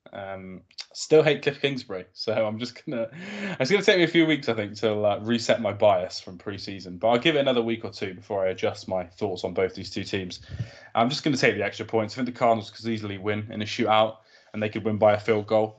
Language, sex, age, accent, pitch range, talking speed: English, male, 20-39, British, 95-115 Hz, 275 wpm